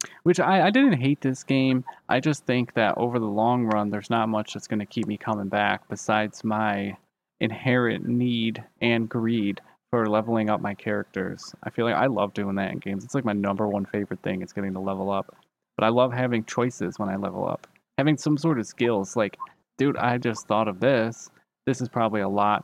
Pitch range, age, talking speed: 105-125 Hz, 20-39, 220 wpm